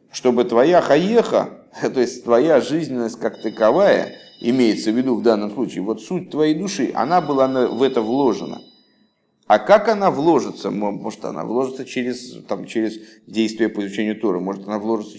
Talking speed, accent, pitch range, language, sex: 160 wpm, native, 105-130 Hz, Russian, male